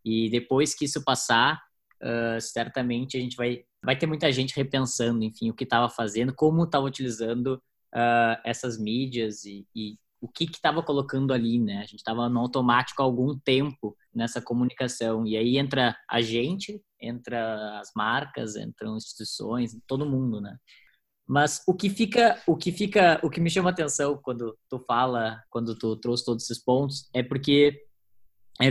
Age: 10-29